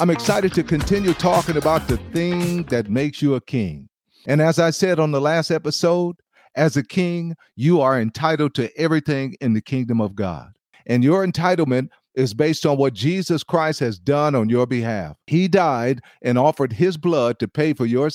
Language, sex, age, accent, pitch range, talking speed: English, male, 50-69, American, 120-160 Hz, 190 wpm